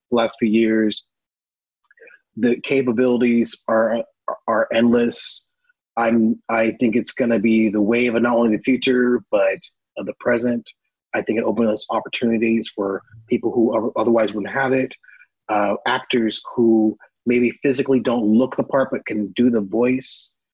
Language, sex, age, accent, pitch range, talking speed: English, male, 30-49, American, 105-125 Hz, 150 wpm